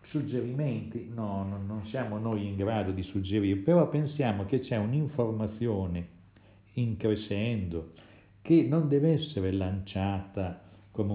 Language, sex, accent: Italian, male, native